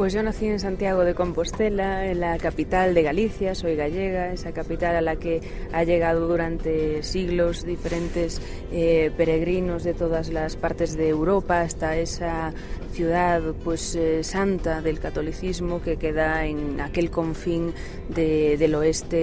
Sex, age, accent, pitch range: female, 20-39, Spanish, 160-185 Hz